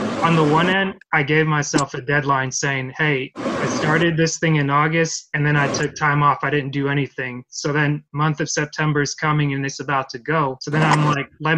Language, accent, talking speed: English, American, 230 wpm